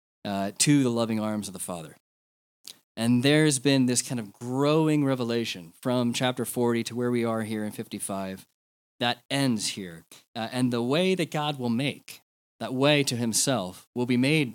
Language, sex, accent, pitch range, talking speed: English, male, American, 110-145 Hz, 180 wpm